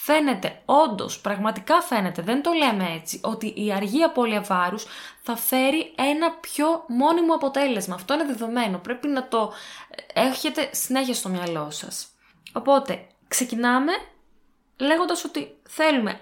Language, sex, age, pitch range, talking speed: Greek, female, 20-39, 215-285 Hz, 125 wpm